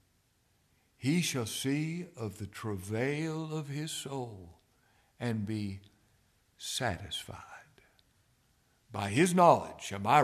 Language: English